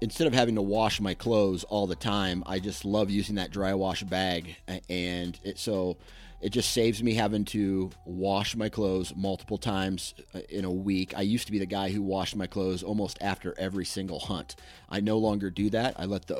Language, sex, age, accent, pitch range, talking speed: English, male, 30-49, American, 90-105 Hz, 210 wpm